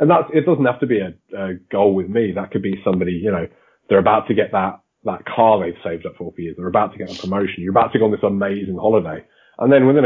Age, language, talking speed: 30-49, English, 280 wpm